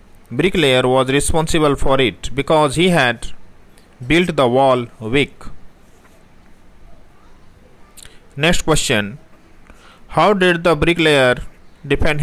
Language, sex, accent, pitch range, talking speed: English, male, Indian, 90-145 Hz, 95 wpm